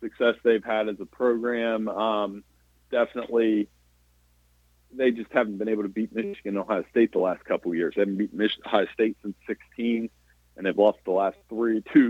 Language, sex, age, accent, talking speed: English, male, 40-59, American, 195 wpm